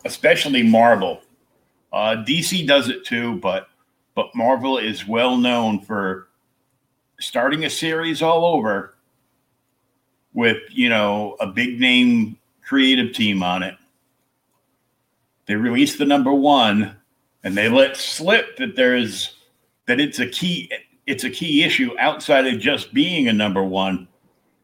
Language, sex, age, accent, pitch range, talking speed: English, male, 50-69, American, 130-215 Hz, 135 wpm